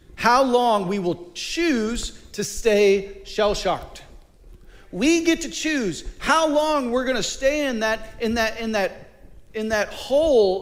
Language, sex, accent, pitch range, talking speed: English, male, American, 150-235 Hz, 145 wpm